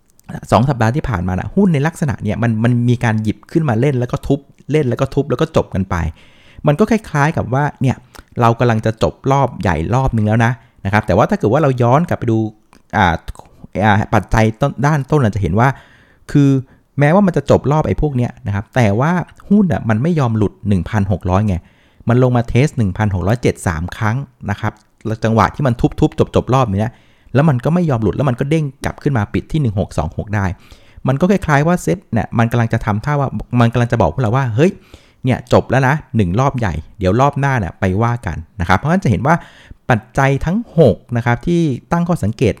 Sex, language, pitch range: male, Thai, 105-140 Hz